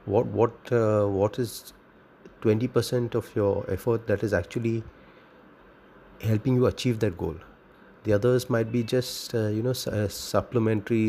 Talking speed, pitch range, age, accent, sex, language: 140 wpm, 100-120 Hz, 30-49, Indian, male, English